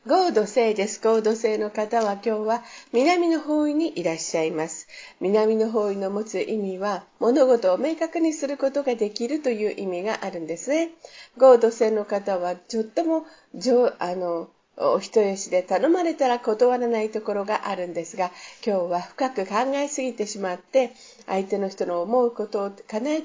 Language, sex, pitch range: Japanese, female, 190-280 Hz